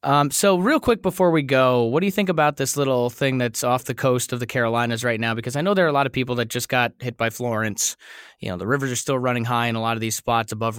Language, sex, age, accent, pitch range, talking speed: English, male, 20-39, American, 120-145 Hz, 300 wpm